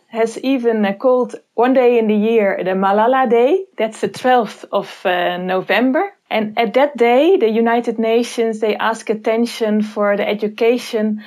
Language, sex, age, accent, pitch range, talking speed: English, female, 20-39, Dutch, 205-240 Hz, 160 wpm